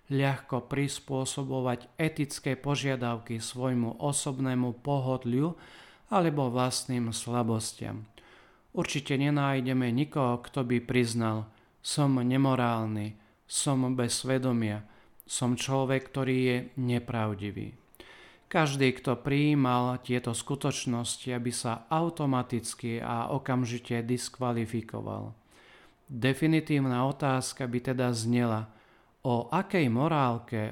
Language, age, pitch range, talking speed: Slovak, 40-59, 120-140 Hz, 90 wpm